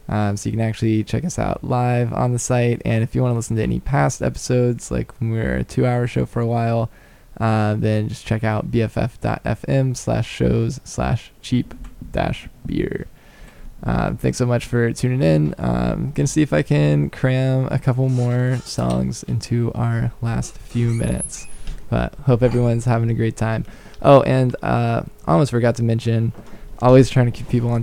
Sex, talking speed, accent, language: male, 195 wpm, American, English